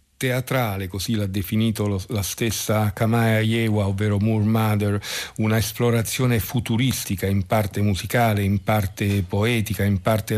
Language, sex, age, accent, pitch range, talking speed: Italian, male, 50-69, native, 100-115 Hz, 125 wpm